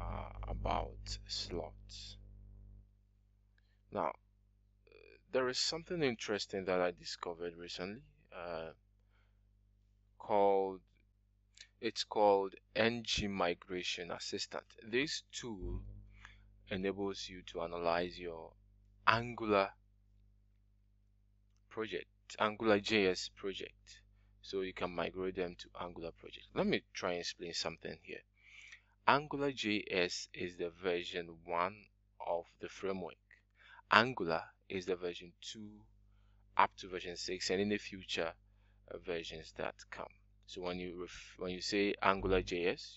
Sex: male